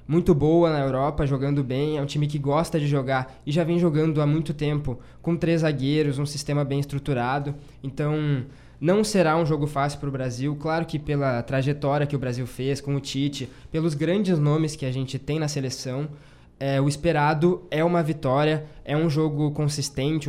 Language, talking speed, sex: Portuguese, 195 wpm, male